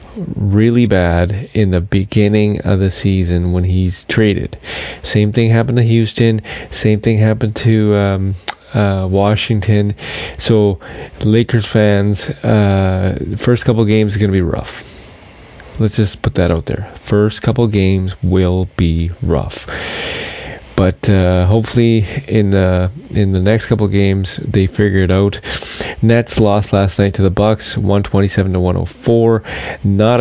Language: English